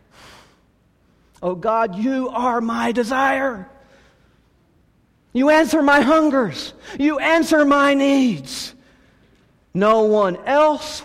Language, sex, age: English, male, 50-69